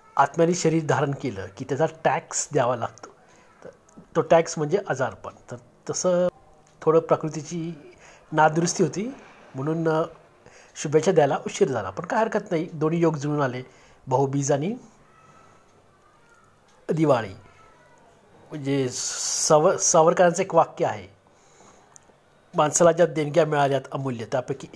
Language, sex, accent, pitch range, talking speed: Marathi, male, native, 140-185 Hz, 120 wpm